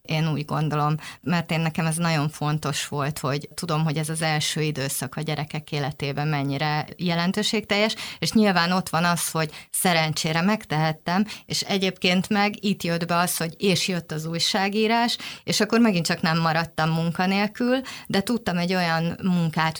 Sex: female